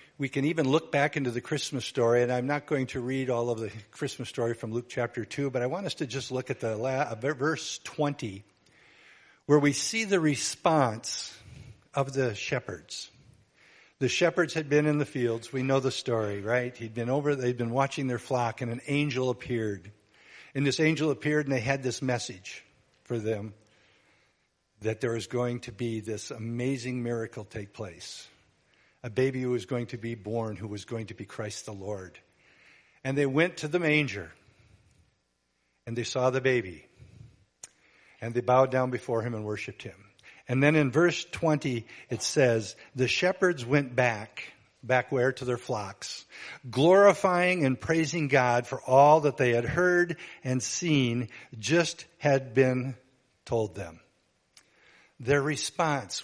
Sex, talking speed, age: male, 170 wpm, 50-69